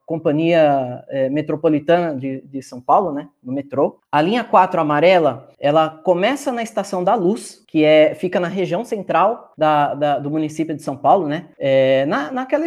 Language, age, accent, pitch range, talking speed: Portuguese, 20-39, Brazilian, 150-215 Hz, 145 wpm